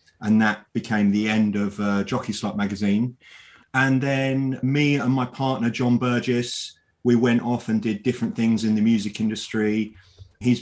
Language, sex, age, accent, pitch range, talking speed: English, male, 30-49, British, 105-120 Hz, 170 wpm